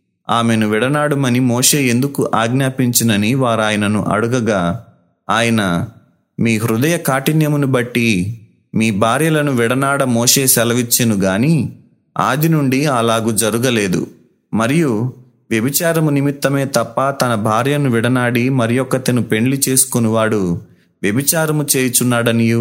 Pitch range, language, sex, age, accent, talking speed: 115-140 Hz, Telugu, male, 30-49, native, 90 wpm